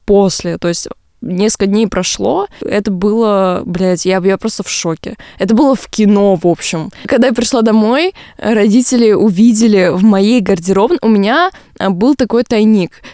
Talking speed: 155 wpm